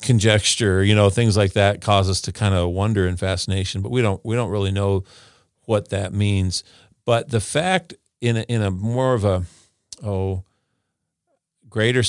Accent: American